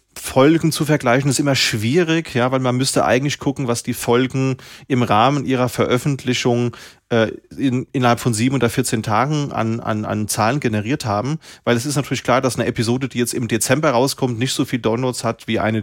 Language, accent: German, German